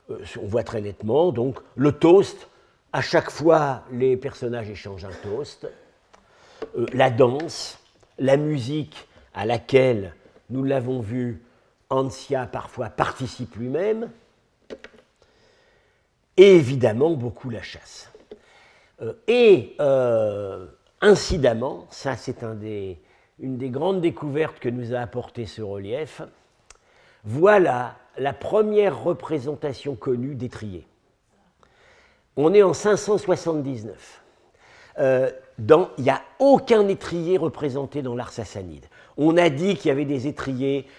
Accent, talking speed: French, 115 wpm